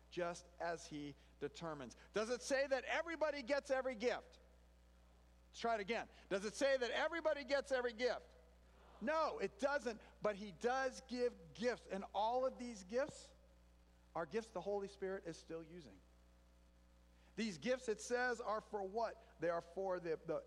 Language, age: English, 50-69